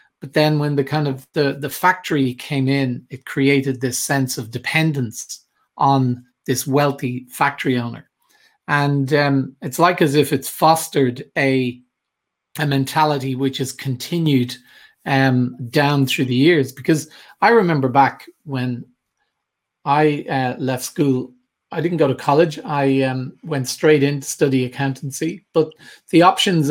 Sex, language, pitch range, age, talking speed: male, English, 130-155 Hz, 40-59, 150 wpm